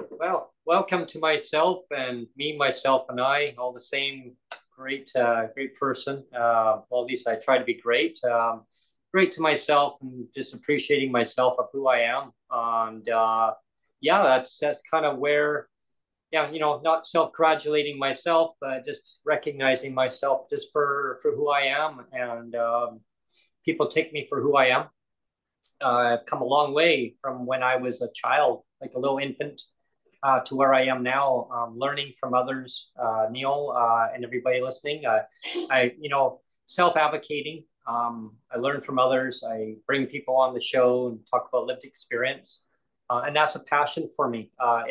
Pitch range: 125-150 Hz